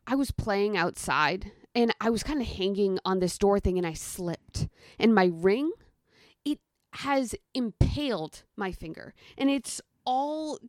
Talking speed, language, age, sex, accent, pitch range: 155 wpm, English, 20-39, female, American, 205-280 Hz